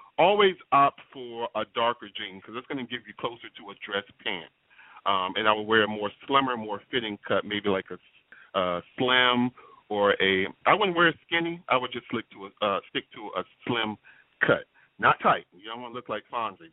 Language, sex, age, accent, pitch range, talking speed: English, male, 40-59, American, 100-130 Hz, 210 wpm